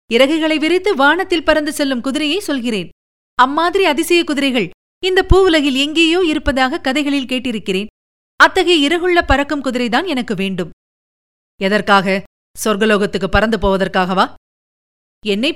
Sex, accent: female, native